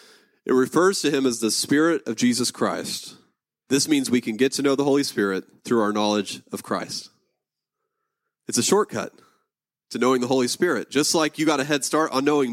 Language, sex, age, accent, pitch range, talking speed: English, male, 30-49, American, 115-150 Hz, 200 wpm